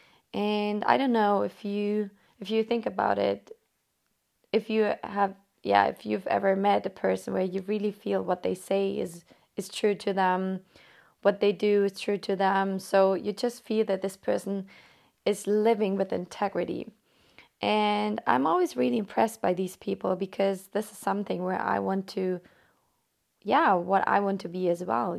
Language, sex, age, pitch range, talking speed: English, female, 20-39, 185-210 Hz, 180 wpm